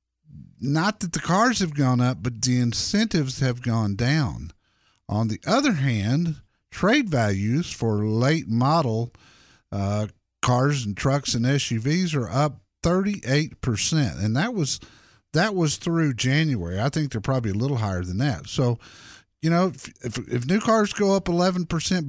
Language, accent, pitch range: English, American, 115-160 Hz